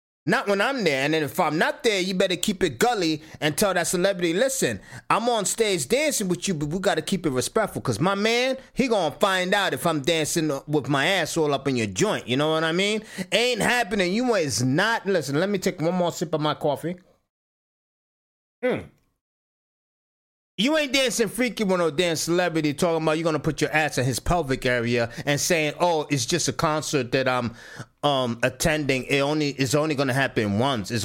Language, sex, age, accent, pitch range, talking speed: English, male, 30-49, American, 140-195 Hz, 210 wpm